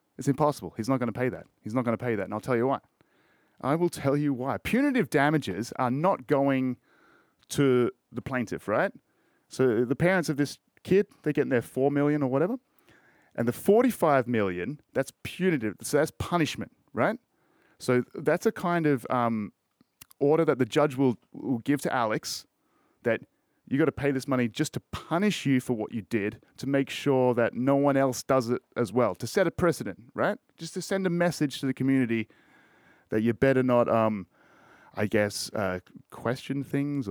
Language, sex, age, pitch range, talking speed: English, male, 30-49, 115-150 Hz, 195 wpm